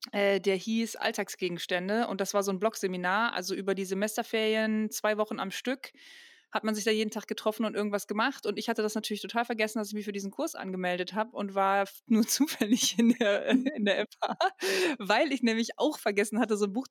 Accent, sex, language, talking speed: German, female, German, 215 wpm